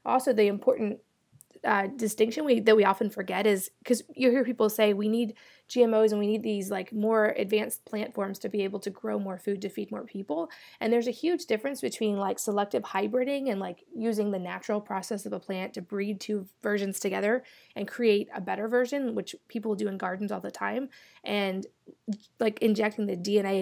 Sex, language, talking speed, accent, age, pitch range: female, English, 205 wpm, American, 20-39, 195-230 Hz